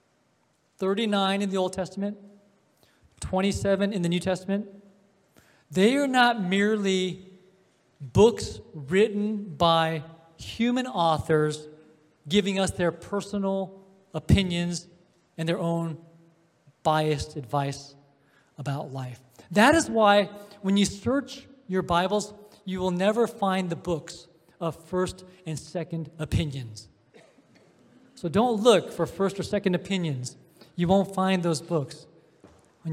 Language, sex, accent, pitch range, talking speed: English, male, American, 155-195 Hz, 115 wpm